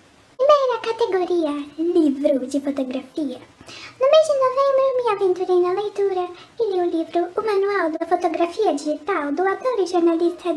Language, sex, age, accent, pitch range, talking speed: Portuguese, male, 10-29, Brazilian, 325-445 Hz, 140 wpm